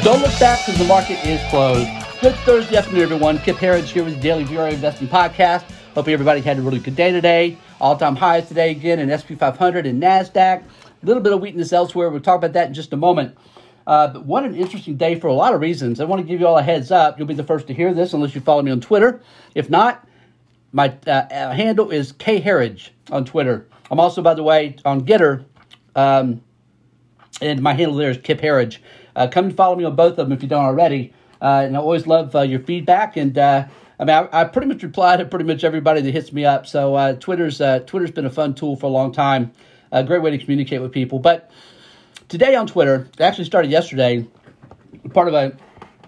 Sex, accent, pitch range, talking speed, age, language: male, American, 135-175 Hz, 230 wpm, 40-59, English